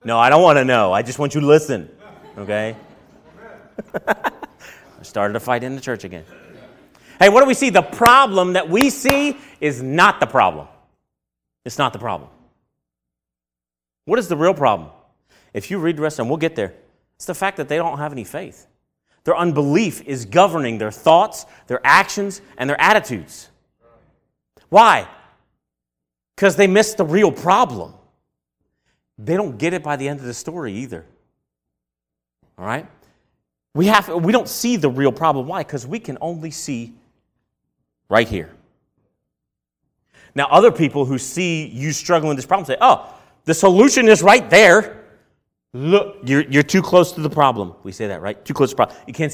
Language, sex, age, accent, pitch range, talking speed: English, male, 30-49, American, 120-185 Hz, 180 wpm